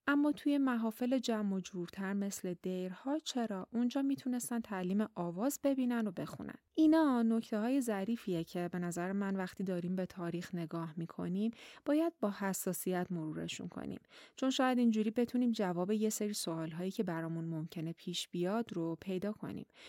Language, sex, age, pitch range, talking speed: Persian, female, 30-49, 175-220 Hz, 155 wpm